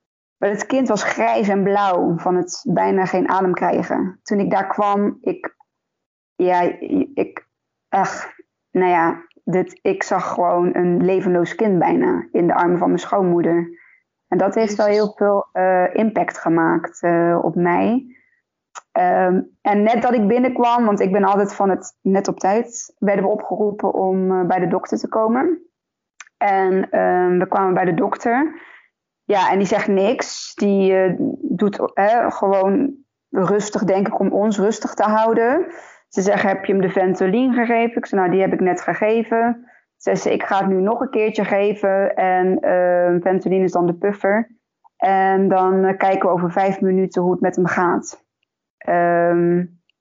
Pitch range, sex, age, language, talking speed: 185-225 Hz, female, 20-39, Dutch, 175 wpm